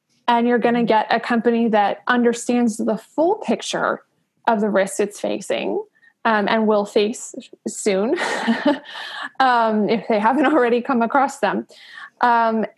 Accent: American